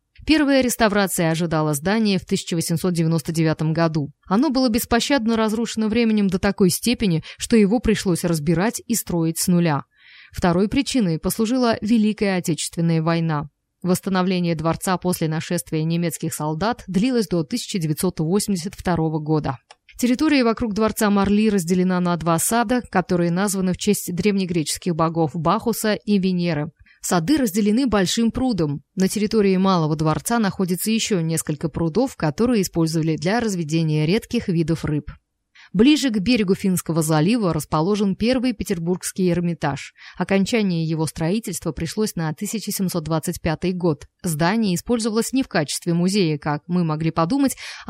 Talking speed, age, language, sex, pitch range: 125 wpm, 20-39, Russian, female, 165-220 Hz